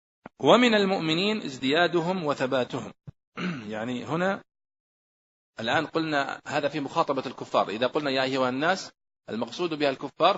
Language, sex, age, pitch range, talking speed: Arabic, male, 40-59, 140-180 Hz, 115 wpm